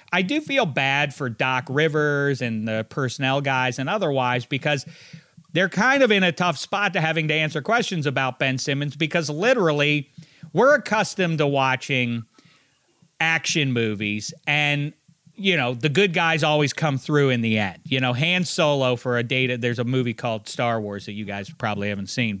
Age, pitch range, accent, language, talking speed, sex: 40-59, 135-195 Hz, American, English, 180 wpm, male